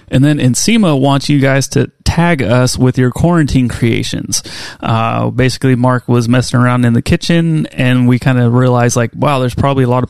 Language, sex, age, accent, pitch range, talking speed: English, male, 30-49, American, 125-140 Hz, 200 wpm